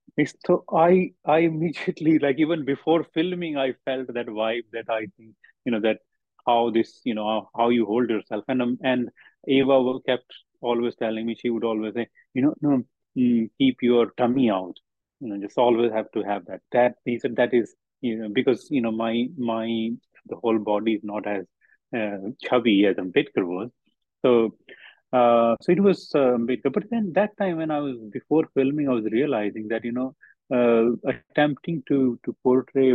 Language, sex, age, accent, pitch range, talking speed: Hindi, male, 30-49, native, 115-135 Hz, 190 wpm